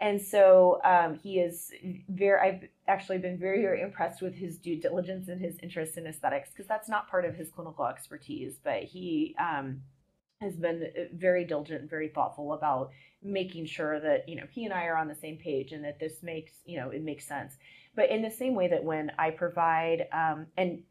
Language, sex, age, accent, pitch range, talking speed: English, female, 30-49, American, 150-180 Hz, 210 wpm